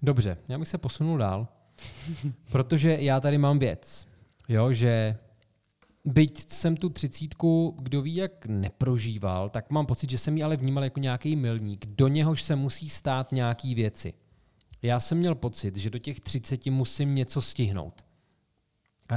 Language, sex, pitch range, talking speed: Czech, male, 110-135 Hz, 155 wpm